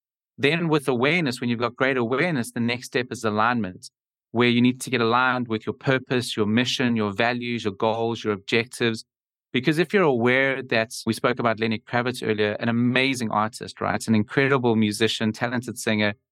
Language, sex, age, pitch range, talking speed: English, male, 30-49, 110-125 Hz, 185 wpm